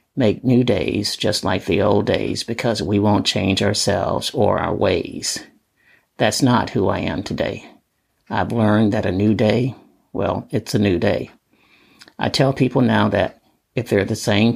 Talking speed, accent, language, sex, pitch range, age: 175 wpm, American, English, male, 100-115 Hz, 50-69